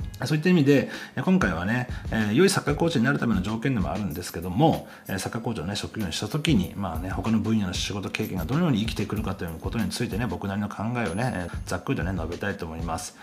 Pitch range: 100-140 Hz